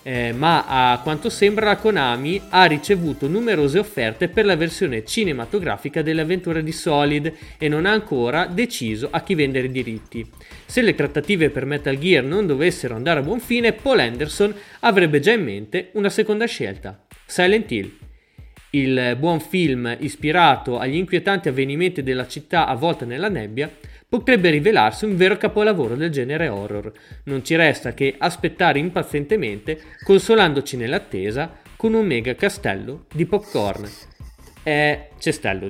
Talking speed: 145 wpm